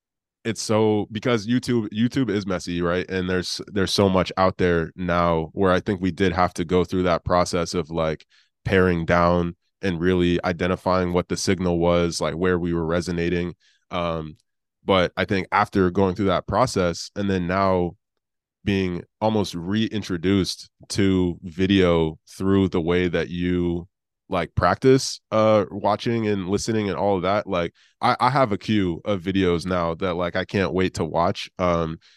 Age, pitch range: 20-39, 90-105 Hz